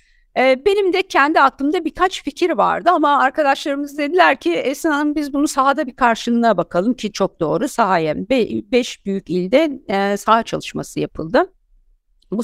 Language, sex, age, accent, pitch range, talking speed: Turkish, female, 50-69, native, 200-280 Hz, 140 wpm